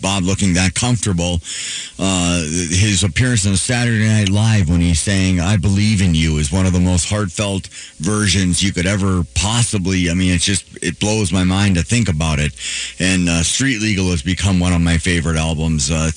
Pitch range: 90-110 Hz